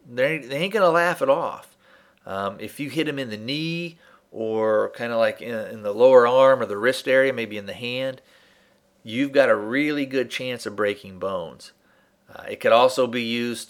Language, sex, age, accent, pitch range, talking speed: English, male, 40-59, American, 105-130 Hz, 210 wpm